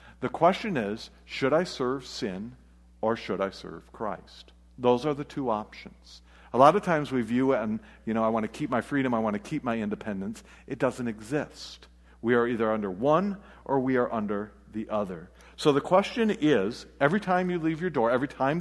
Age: 50-69